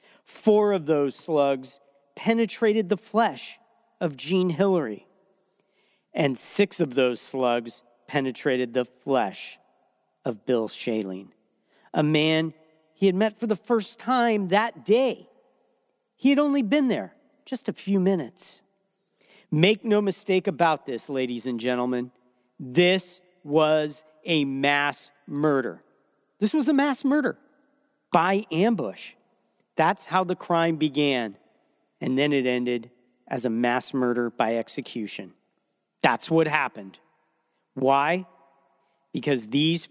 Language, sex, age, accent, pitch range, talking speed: English, male, 40-59, American, 130-215 Hz, 125 wpm